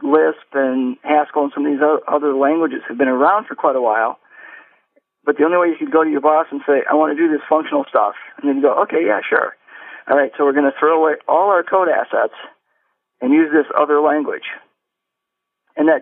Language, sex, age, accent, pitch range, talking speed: English, male, 50-69, American, 140-155 Hz, 230 wpm